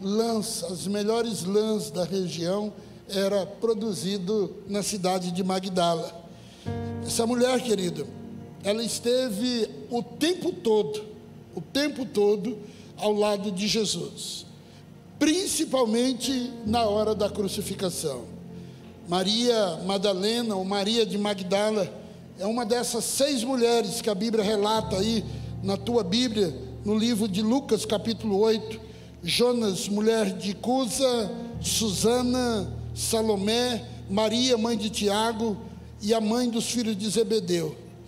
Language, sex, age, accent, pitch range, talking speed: Portuguese, male, 60-79, Brazilian, 200-240 Hz, 115 wpm